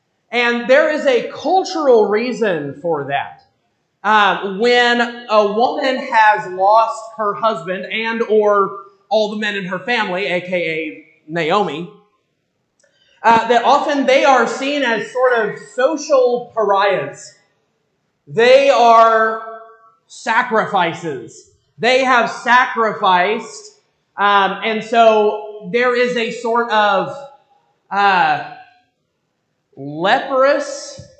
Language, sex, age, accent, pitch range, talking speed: English, male, 30-49, American, 190-250 Hz, 100 wpm